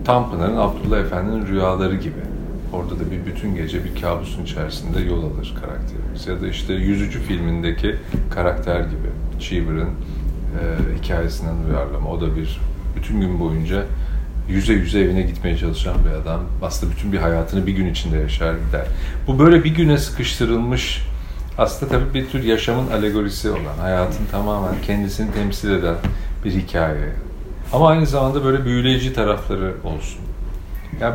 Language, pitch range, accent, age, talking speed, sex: Turkish, 85-120 Hz, native, 40-59, 150 wpm, male